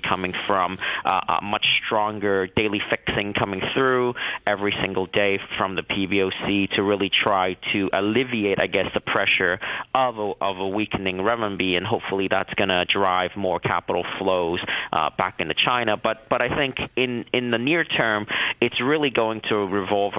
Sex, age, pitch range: male, 40-59, 95-110 Hz